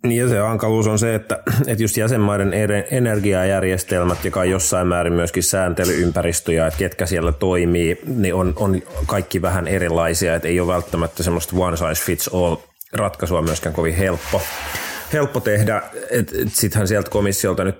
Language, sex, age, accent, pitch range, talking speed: Finnish, male, 30-49, native, 85-105 Hz, 140 wpm